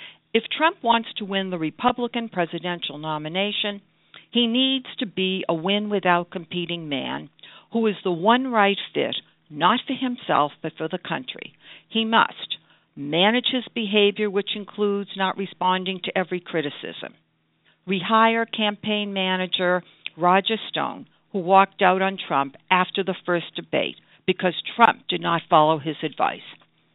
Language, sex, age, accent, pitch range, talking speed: English, female, 60-79, American, 160-210 Hz, 140 wpm